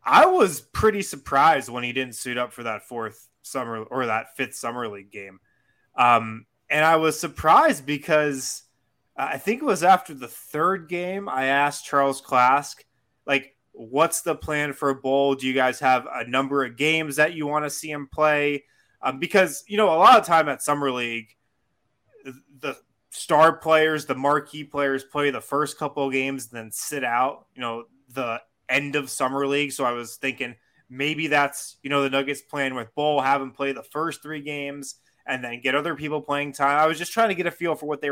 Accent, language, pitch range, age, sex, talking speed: American, English, 130-165 Hz, 20-39, male, 205 wpm